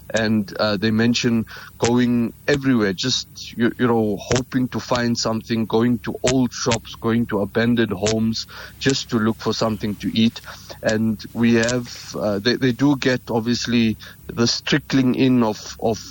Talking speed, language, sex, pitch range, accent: 160 wpm, English, male, 110-120 Hz, South African